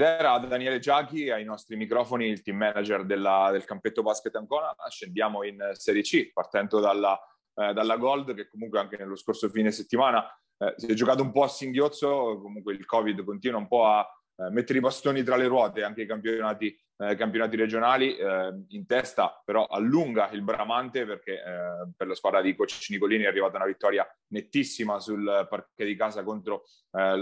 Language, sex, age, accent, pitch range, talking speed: Italian, male, 30-49, native, 105-130 Hz, 185 wpm